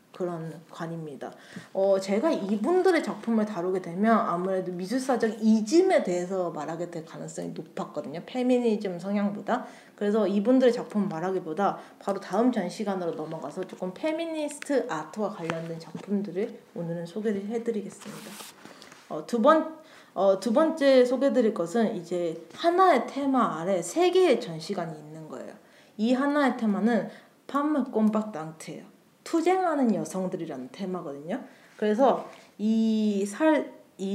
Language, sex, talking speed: English, female, 105 wpm